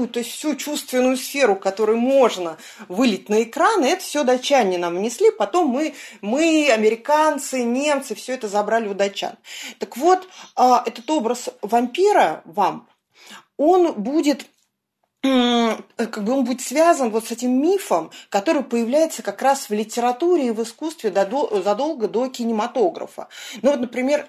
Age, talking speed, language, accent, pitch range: 30-49, 145 wpm, Russian, native, 215-275 Hz